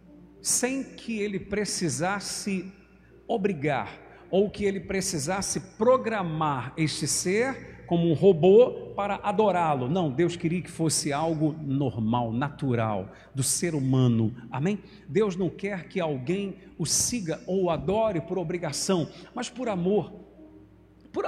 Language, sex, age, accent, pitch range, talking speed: Portuguese, male, 50-69, Brazilian, 155-230 Hz, 125 wpm